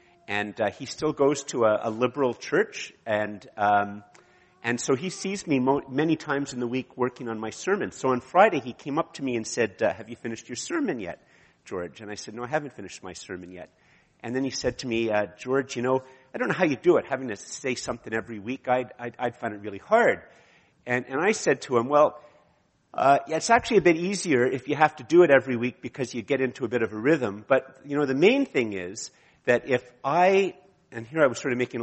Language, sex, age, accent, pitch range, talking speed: English, male, 50-69, American, 115-150 Hz, 250 wpm